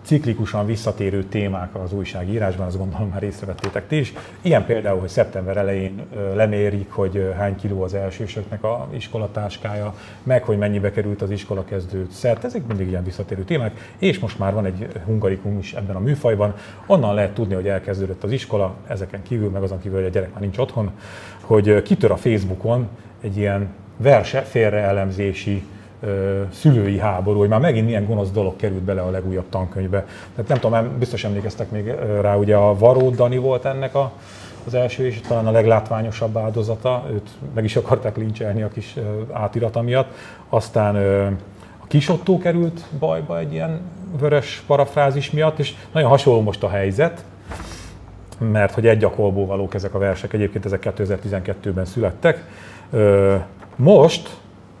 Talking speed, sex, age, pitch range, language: 155 wpm, male, 30-49, 100-115 Hz, Hungarian